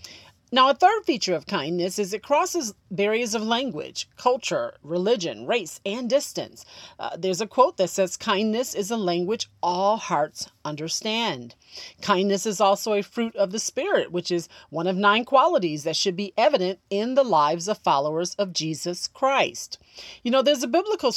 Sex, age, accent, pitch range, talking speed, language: female, 40-59, American, 175-245 Hz, 175 wpm, English